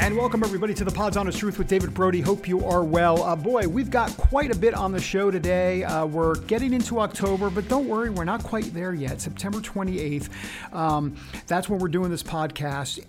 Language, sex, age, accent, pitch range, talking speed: English, male, 50-69, American, 150-200 Hz, 220 wpm